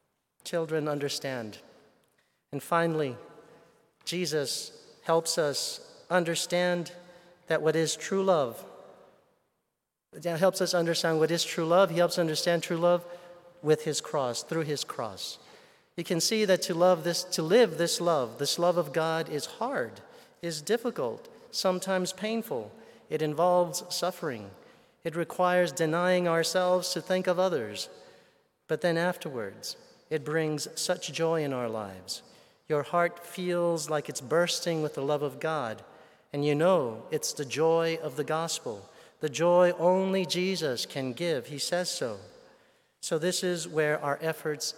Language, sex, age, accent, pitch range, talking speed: English, male, 40-59, American, 155-180 Hz, 145 wpm